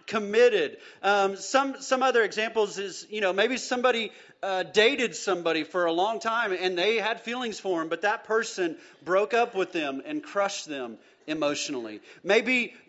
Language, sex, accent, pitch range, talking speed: English, male, American, 175-250 Hz, 170 wpm